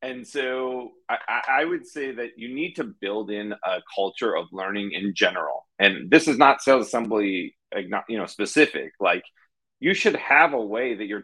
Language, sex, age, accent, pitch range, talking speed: English, male, 30-49, American, 105-135 Hz, 185 wpm